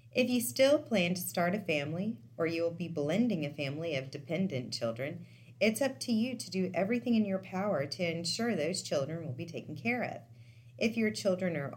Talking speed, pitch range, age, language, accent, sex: 210 wpm, 140-200 Hz, 30-49, English, American, female